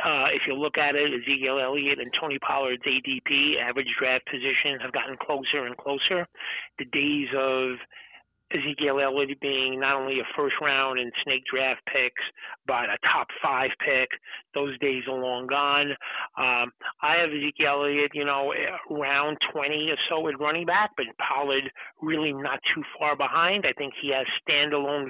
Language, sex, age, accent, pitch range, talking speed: English, male, 40-59, American, 135-150 Hz, 165 wpm